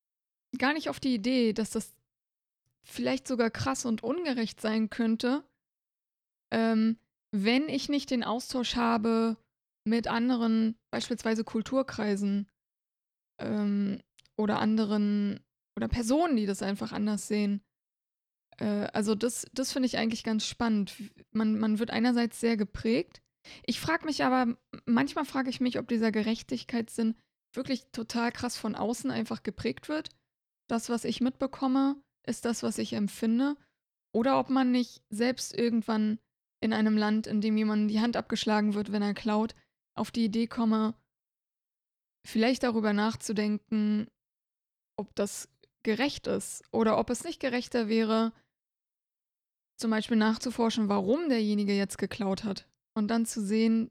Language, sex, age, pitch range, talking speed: German, female, 20-39, 215-245 Hz, 140 wpm